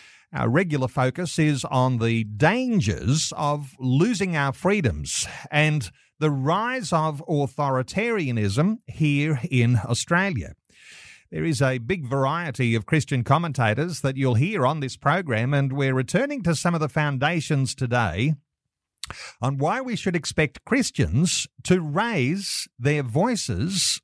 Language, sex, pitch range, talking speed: English, male, 125-165 Hz, 130 wpm